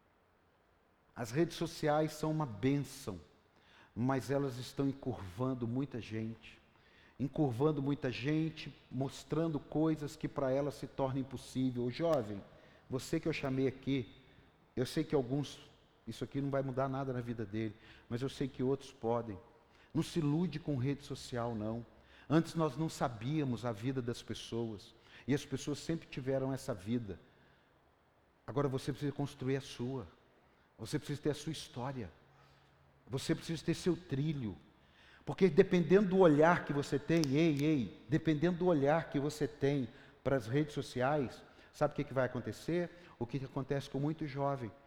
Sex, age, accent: male, 50-69, Brazilian